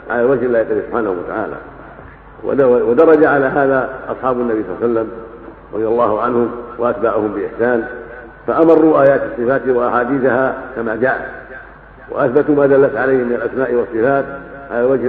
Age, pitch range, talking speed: 50-69, 120-145 Hz, 135 wpm